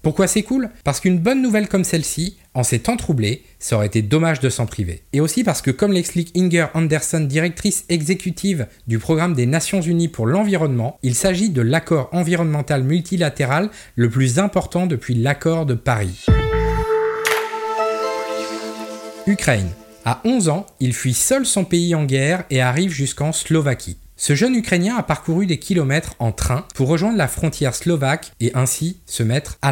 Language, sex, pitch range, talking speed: French, male, 125-180 Hz, 170 wpm